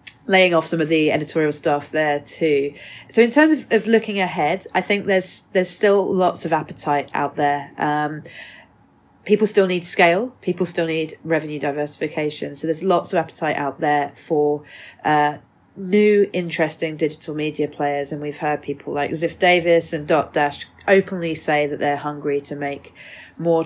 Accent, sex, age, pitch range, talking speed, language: British, female, 30-49, 155-195 Hz, 170 wpm, English